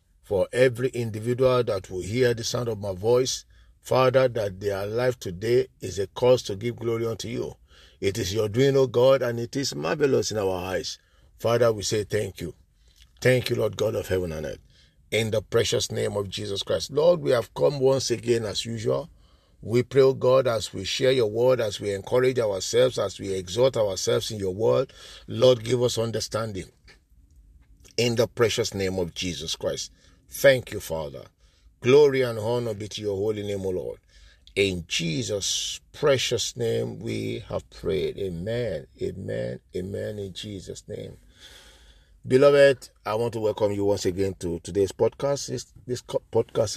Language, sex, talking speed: English, male, 175 wpm